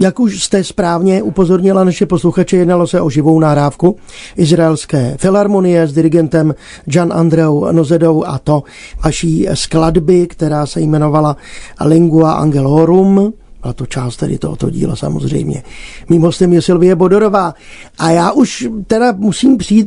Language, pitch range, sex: Czech, 160-190 Hz, male